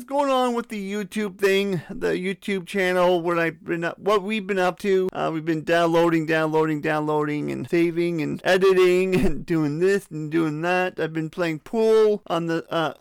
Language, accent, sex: English, American, male